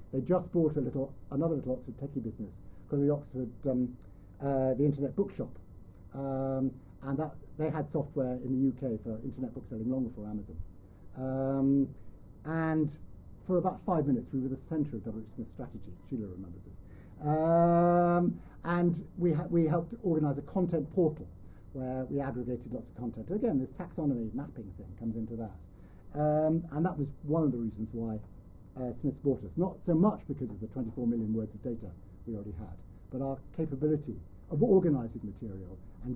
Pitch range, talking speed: 105-150 Hz, 185 wpm